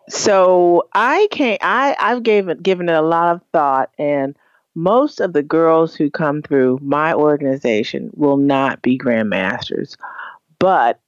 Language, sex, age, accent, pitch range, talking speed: English, female, 40-59, American, 150-180 Hz, 145 wpm